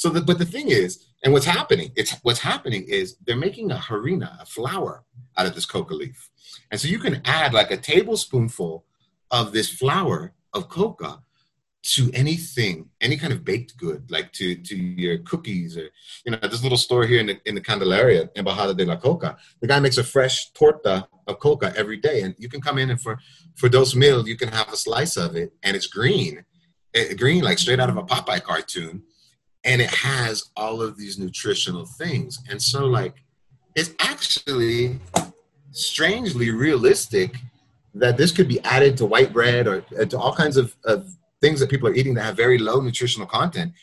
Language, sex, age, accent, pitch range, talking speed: English, male, 30-49, American, 115-165 Hz, 195 wpm